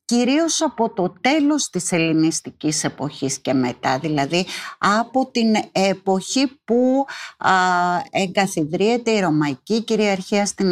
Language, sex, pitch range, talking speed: English, female, 165-220 Hz, 105 wpm